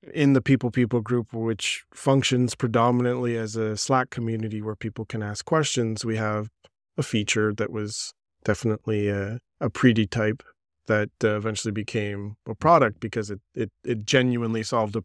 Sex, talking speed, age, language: male, 165 wpm, 20-39, English